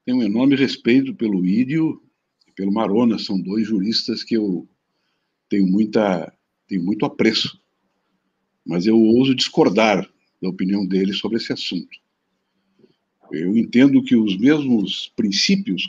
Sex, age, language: male, 60-79, Portuguese